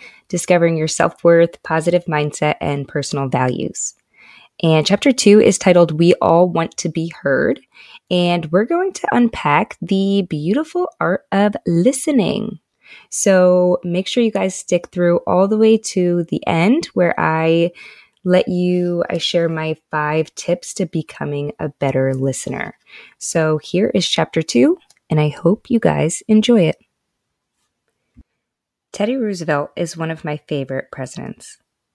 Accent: American